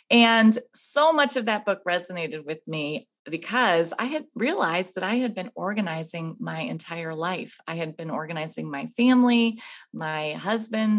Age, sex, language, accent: 30-49, female, English, American